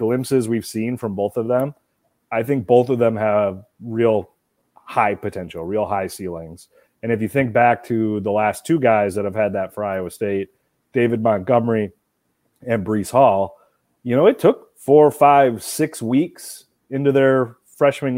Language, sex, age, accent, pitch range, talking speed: English, male, 30-49, American, 105-130 Hz, 170 wpm